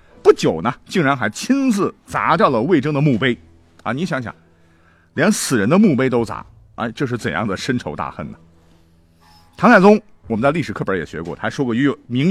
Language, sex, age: Chinese, male, 50-69